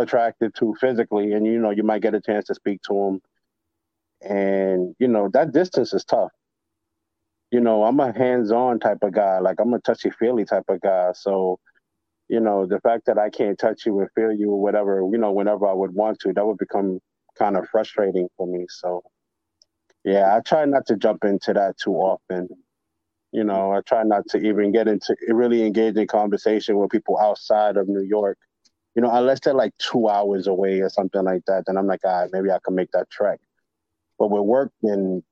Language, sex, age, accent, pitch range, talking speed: English, male, 20-39, American, 95-115 Hz, 205 wpm